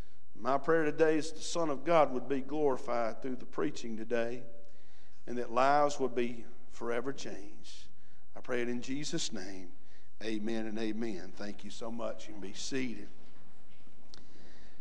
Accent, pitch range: American, 130-195 Hz